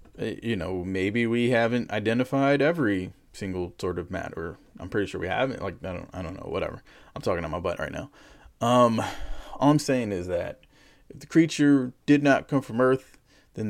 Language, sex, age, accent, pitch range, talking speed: English, male, 20-39, American, 100-130 Hz, 195 wpm